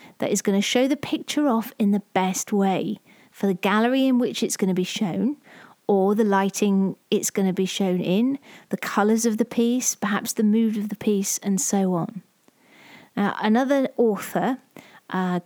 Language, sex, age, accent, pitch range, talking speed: English, female, 40-59, British, 195-245 Hz, 190 wpm